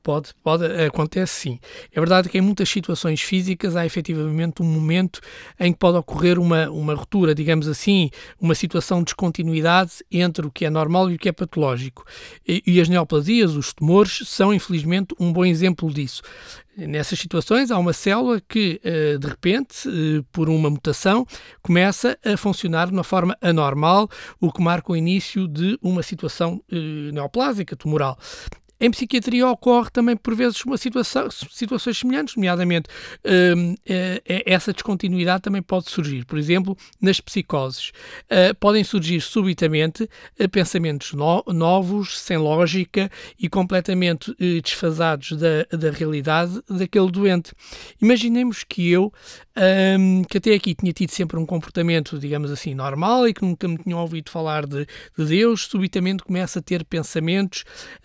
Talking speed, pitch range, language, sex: 140 wpm, 160-195 Hz, Portuguese, male